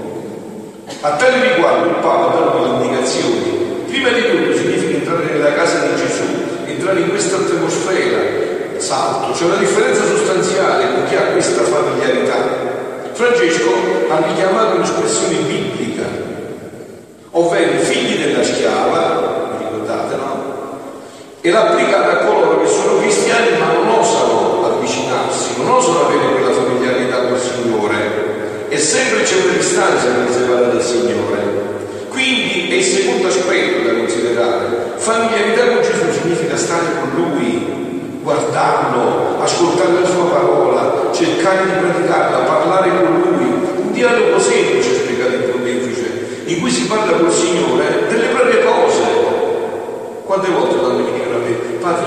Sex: male